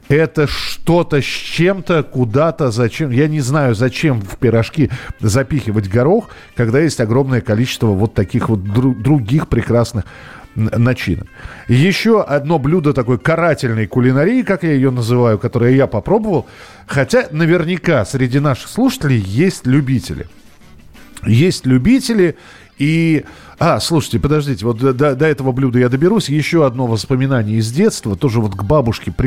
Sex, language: male, Russian